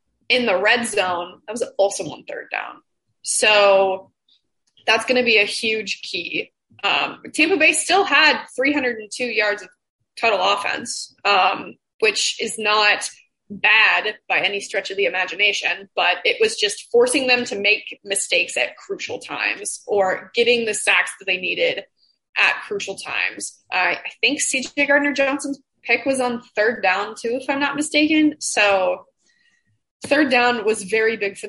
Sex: female